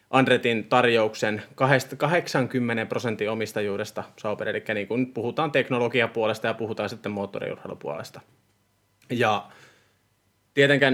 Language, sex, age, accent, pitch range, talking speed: Finnish, male, 20-39, native, 110-130 Hz, 80 wpm